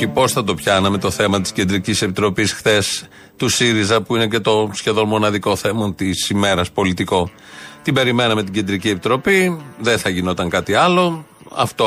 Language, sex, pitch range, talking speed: Greek, male, 105-145 Hz, 165 wpm